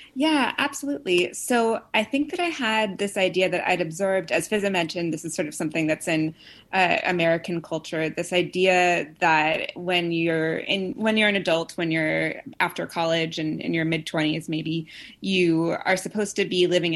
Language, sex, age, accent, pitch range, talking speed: English, female, 20-39, American, 160-195 Hz, 185 wpm